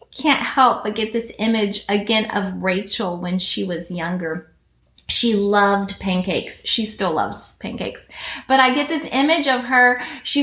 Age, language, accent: 20-39, English, American